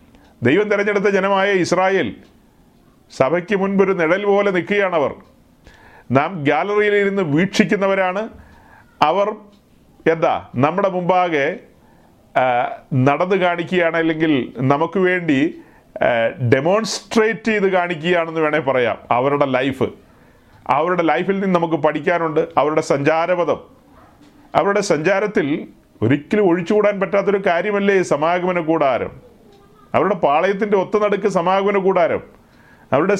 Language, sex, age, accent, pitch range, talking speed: Malayalam, male, 40-59, native, 165-205 Hz, 90 wpm